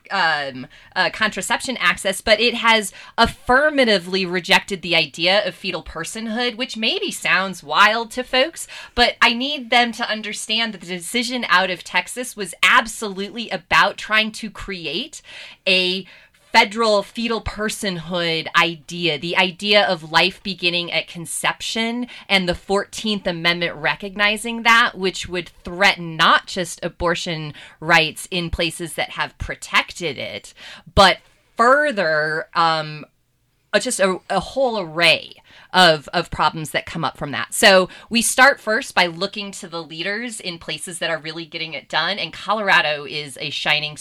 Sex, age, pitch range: female, 30-49, 170-220 Hz